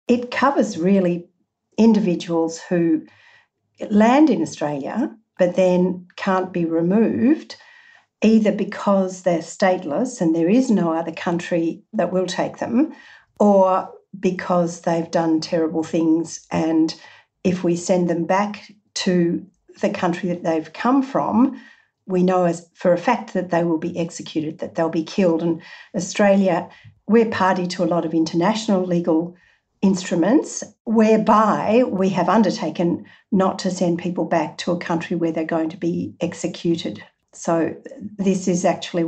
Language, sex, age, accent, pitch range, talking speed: English, female, 50-69, Australian, 170-210 Hz, 145 wpm